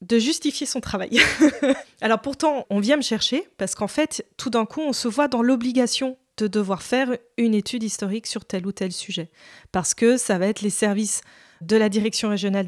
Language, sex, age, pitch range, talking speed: French, female, 20-39, 205-265 Hz, 205 wpm